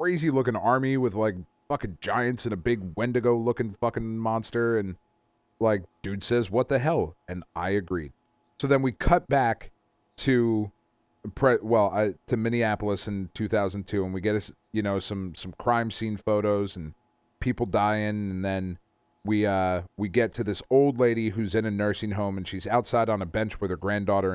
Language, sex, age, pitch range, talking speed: English, male, 30-49, 100-120 Hz, 185 wpm